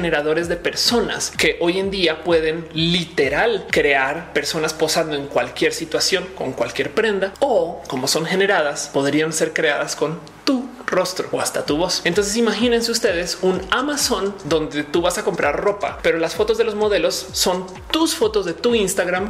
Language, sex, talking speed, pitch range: Spanish, male, 170 wpm, 150-195 Hz